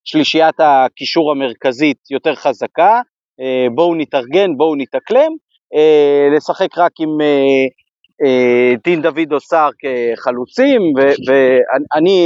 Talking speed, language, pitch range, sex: 90 wpm, Hebrew, 130-170 Hz, male